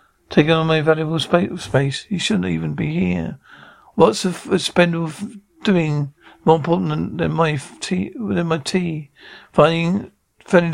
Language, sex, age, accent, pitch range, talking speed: English, male, 60-79, British, 150-180 Hz, 150 wpm